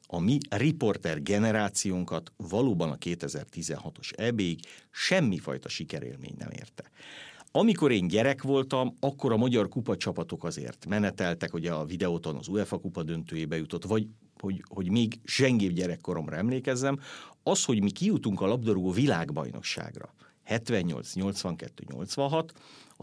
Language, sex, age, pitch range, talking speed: Hungarian, male, 50-69, 90-120 Hz, 120 wpm